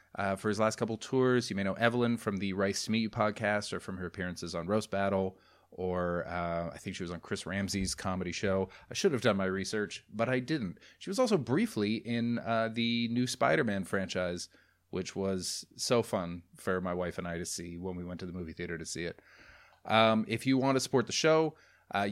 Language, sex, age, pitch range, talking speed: English, male, 30-49, 95-115 Hz, 230 wpm